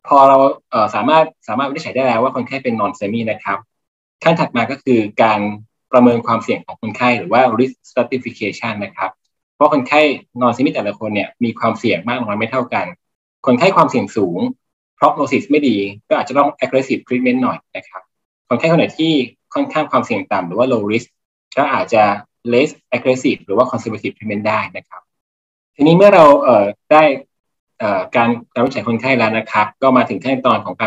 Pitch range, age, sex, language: 110-140 Hz, 20-39, male, Thai